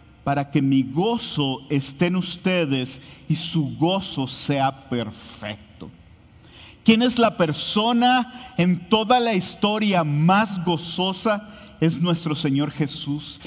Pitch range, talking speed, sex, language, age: 150-205 Hz, 115 wpm, male, English, 50-69